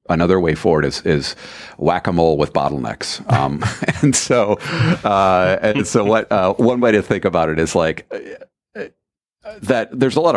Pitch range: 80-90 Hz